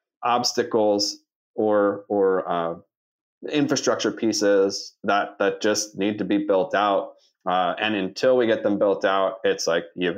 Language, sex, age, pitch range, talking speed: English, male, 20-39, 95-110 Hz, 145 wpm